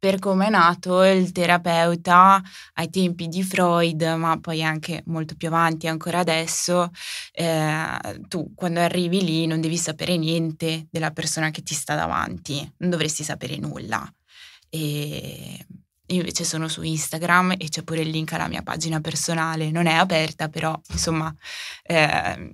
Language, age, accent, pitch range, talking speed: Italian, 20-39, native, 160-180 Hz, 150 wpm